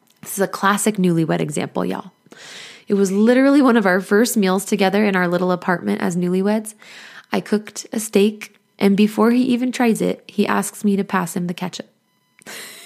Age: 20-39